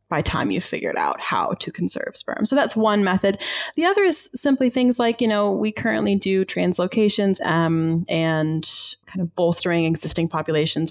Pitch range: 160-210 Hz